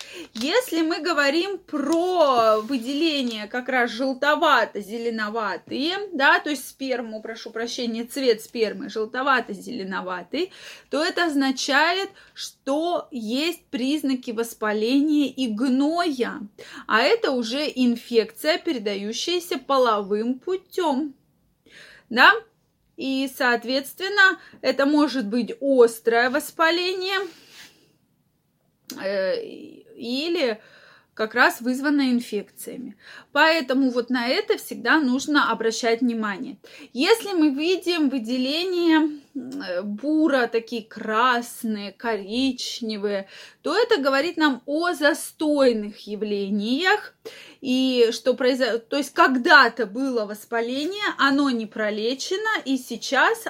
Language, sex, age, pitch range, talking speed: Russian, female, 20-39, 235-315 Hz, 90 wpm